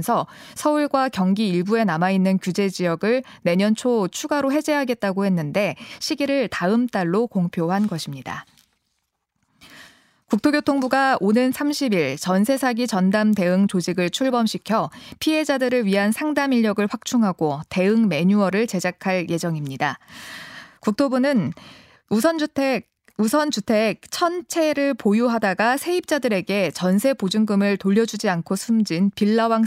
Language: Korean